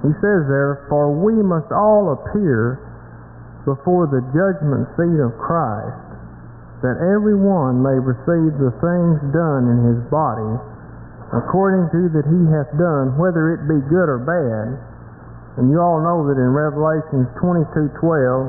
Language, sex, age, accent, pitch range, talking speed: English, male, 50-69, American, 130-190 Hz, 155 wpm